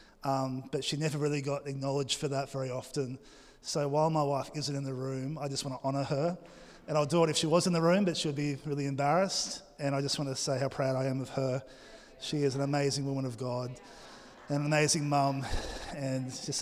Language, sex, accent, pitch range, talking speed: English, male, Australian, 140-170 Hz, 235 wpm